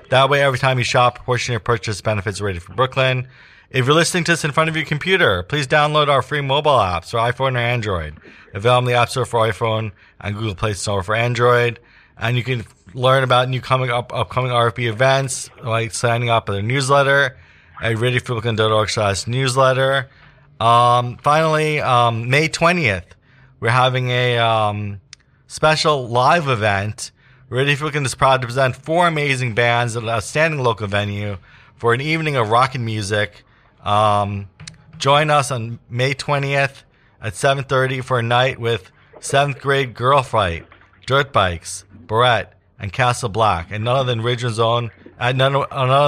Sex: male